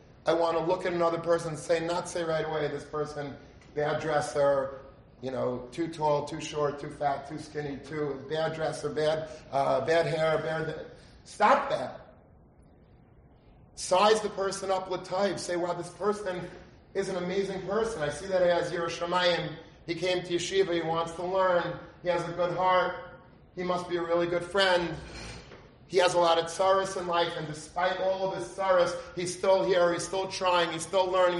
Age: 30-49